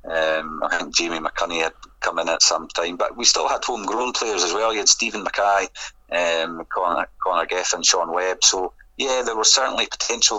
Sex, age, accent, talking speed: male, 40-59, British, 200 wpm